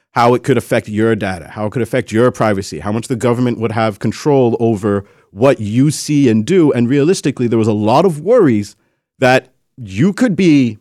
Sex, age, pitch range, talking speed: male, 30-49, 115-175 Hz, 205 wpm